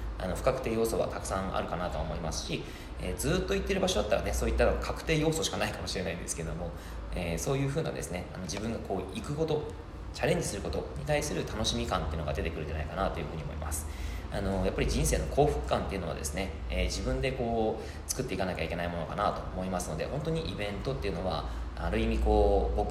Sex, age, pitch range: male, 20-39, 80-105 Hz